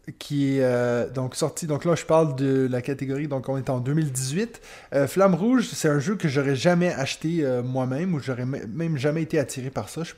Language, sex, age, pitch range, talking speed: French, male, 20-39, 135-170 Hz, 235 wpm